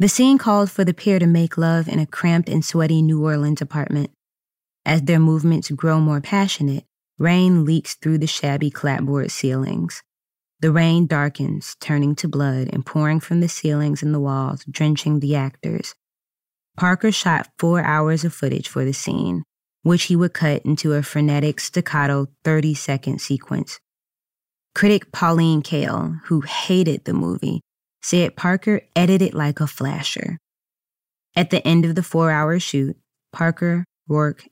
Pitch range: 145-170 Hz